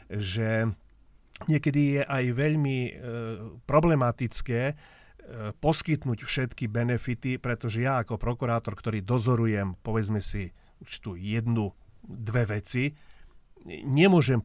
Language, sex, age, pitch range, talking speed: Slovak, male, 40-59, 110-130 Hz, 105 wpm